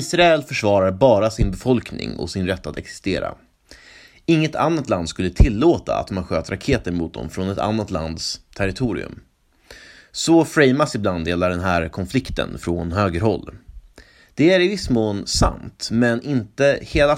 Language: Swedish